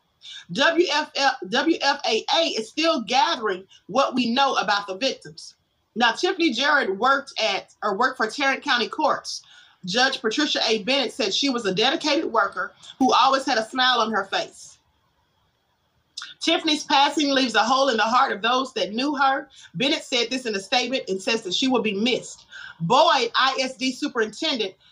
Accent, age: American, 30-49